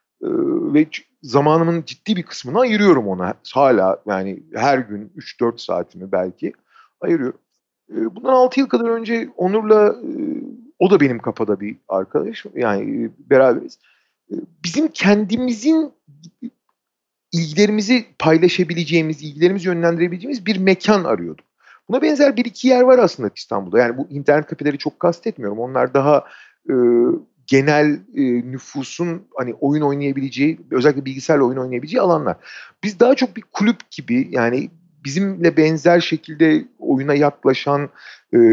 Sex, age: male, 40-59